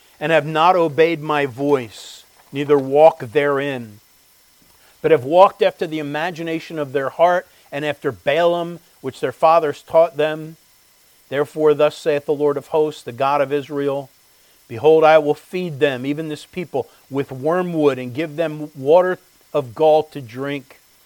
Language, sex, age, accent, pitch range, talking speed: English, male, 50-69, American, 140-170 Hz, 155 wpm